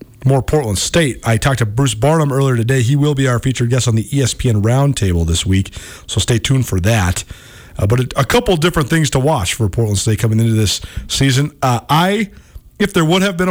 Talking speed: 220 wpm